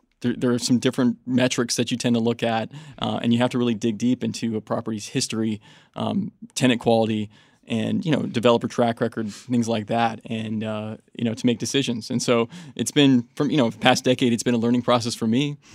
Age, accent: 20-39, American